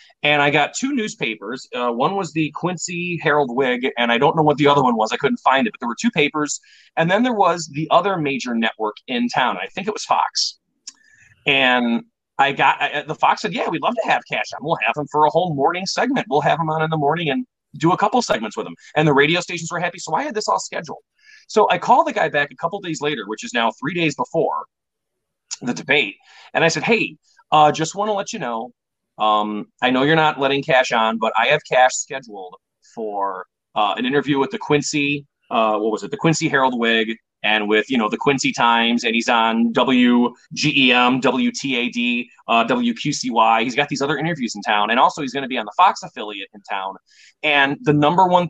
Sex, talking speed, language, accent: male, 240 wpm, English, American